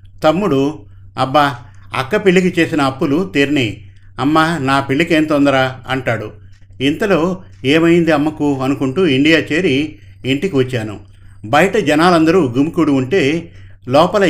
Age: 50-69